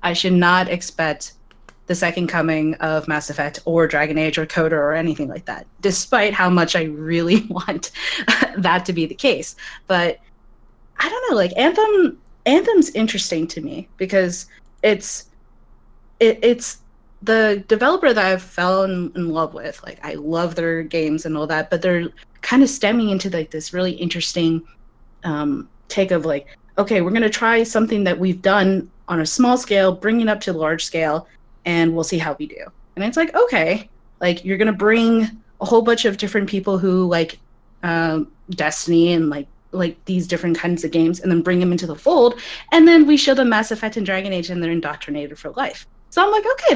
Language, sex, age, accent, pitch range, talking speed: English, female, 30-49, American, 165-215 Hz, 195 wpm